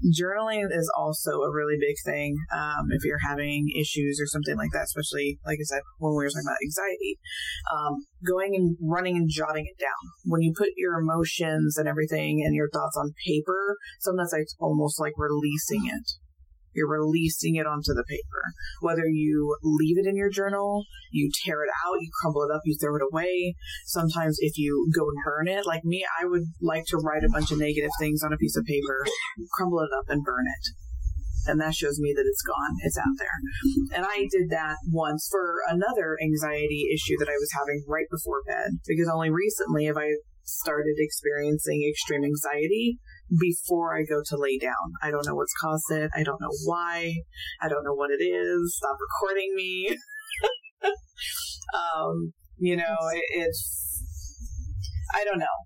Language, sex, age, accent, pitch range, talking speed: English, female, 20-39, American, 145-175 Hz, 190 wpm